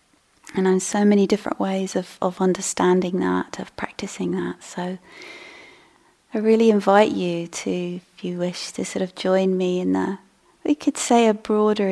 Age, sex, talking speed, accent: 30-49, female, 170 wpm, British